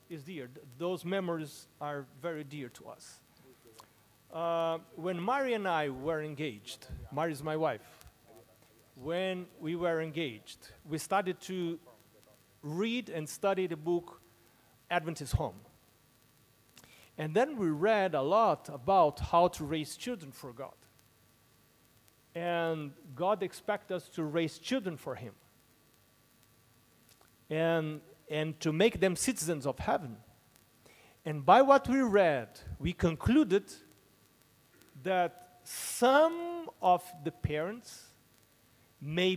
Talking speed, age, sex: 115 wpm, 40-59, male